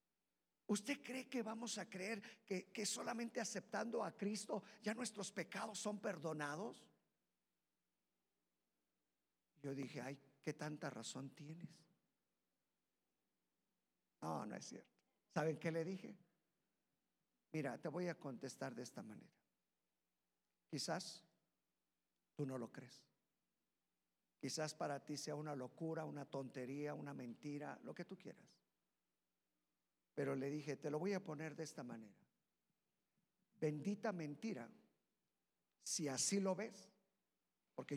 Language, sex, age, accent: Spanish, male, 50-69, Mexican